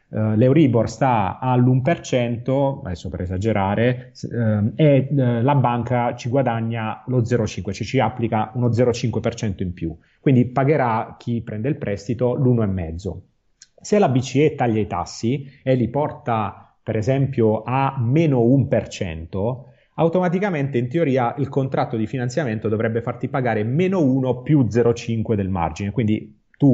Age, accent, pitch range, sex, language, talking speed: 30-49, native, 110-140 Hz, male, Italian, 130 wpm